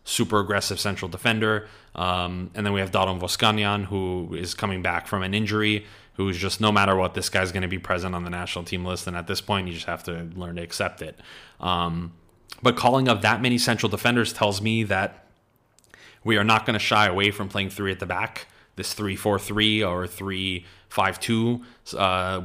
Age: 30-49